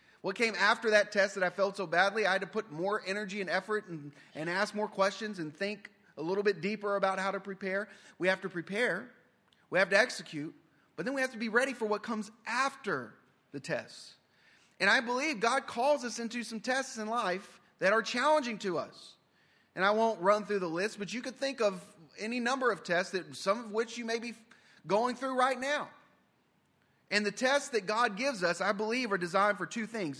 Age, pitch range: 30-49, 180-230 Hz